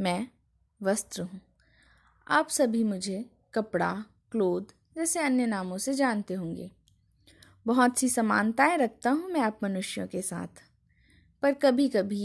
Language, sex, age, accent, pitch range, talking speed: Hindi, female, 20-39, native, 190-275 Hz, 130 wpm